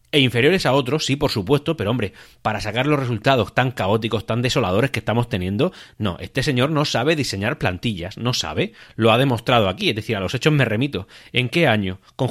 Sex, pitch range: male, 110-140 Hz